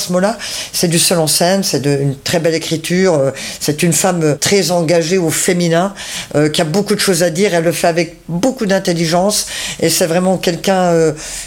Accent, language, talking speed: French, French, 205 wpm